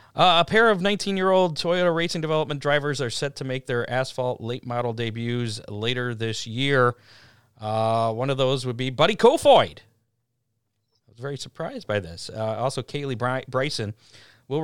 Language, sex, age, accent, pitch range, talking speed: English, male, 40-59, American, 110-130 Hz, 170 wpm